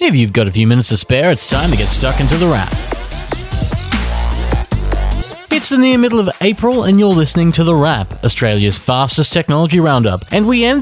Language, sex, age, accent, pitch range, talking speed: English, male, 30-49, Australian, 120-200 Hz, 195 wpm